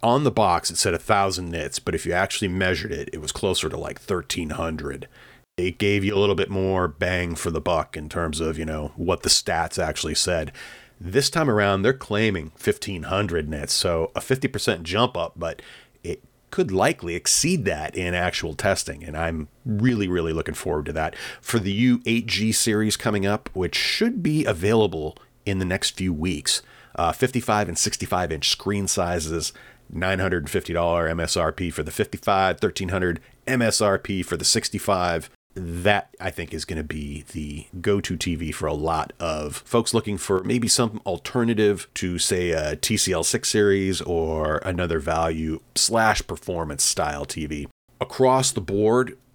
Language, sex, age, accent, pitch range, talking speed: English, male, 40-59, American, 85-105 Hz, 165 wpm